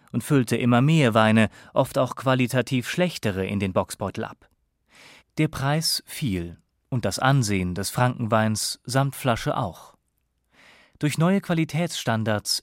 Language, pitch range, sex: German, 100-140 Hz, male